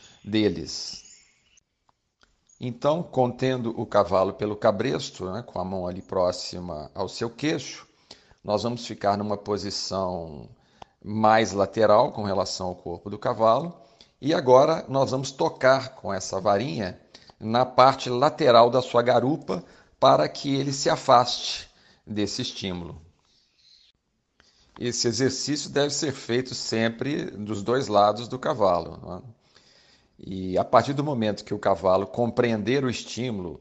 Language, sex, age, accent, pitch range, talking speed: Portuguese, male, 40-59, Brazilian, 100-130 Hz, 130 wpm